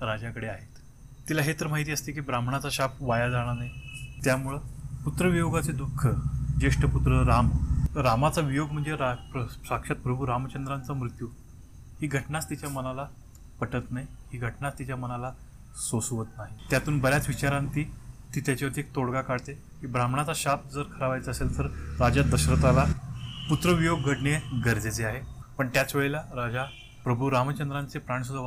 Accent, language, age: native, Marathi, 30-49